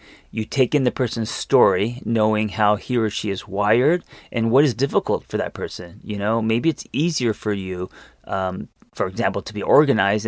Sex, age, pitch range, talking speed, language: male, 30-49, 100-125 Hz, 195 wpm, English